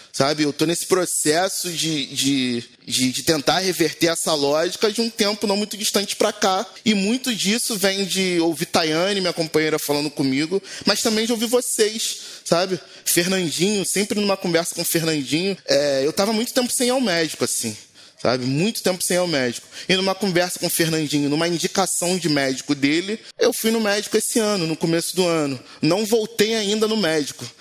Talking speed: 185 wpm